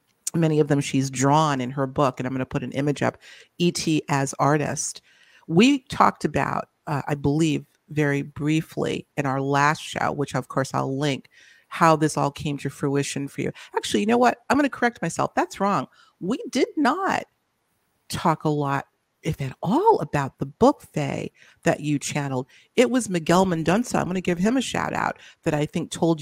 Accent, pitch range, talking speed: American, 145-180 Hz, 200 wpm